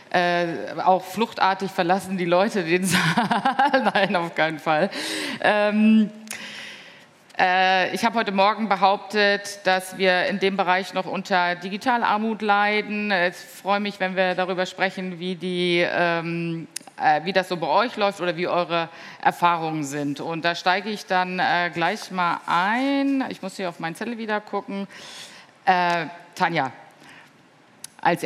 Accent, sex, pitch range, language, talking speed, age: German, female, 175-205 Hz, German, 150 wpm, 50-69